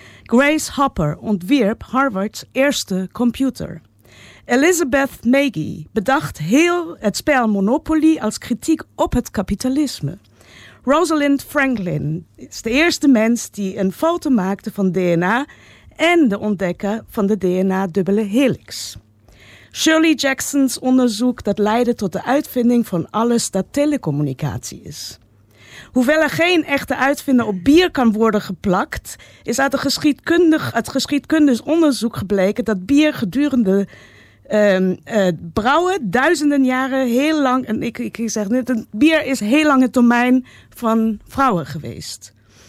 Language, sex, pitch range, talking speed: Dutch, female, 195-275 Hz, 125 wpm